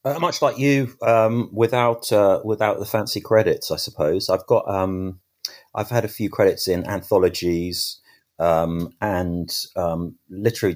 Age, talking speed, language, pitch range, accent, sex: 30-49, 150 wpm, English, 80-110 Hz, British, male